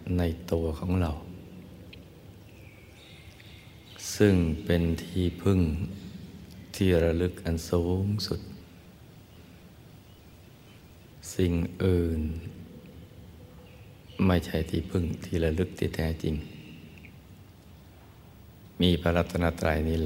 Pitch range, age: 80-95 Hz, 60-79